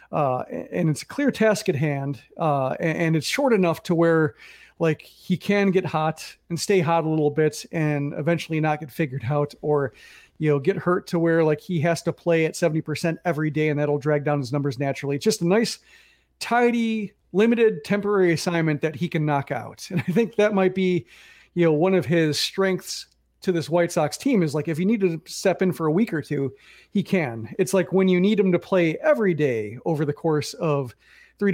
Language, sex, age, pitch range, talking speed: English, male, 40-59, 150-190 Hz, 220 wpm